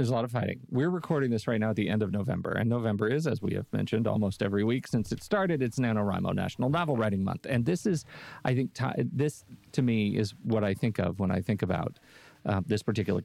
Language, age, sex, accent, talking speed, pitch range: English, 40-59, male, American, 250 wpm, 105-135 Hz